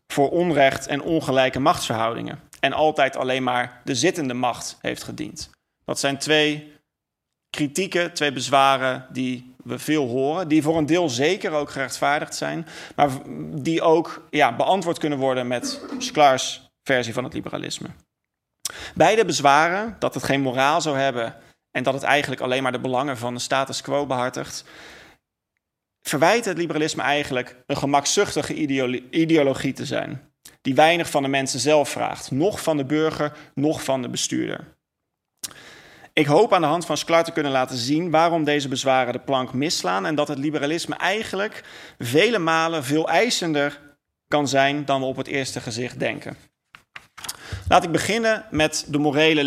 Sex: male